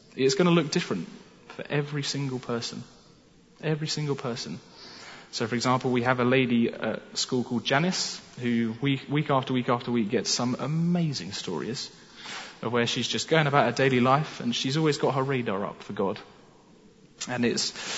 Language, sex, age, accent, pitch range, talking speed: English, male, 20-39, British, 120-155 Hz, 180 wpm